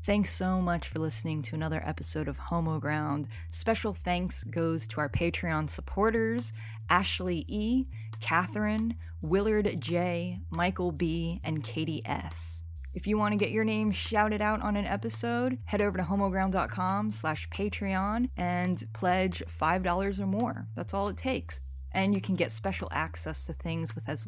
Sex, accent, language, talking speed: female, American, English, 160 wpm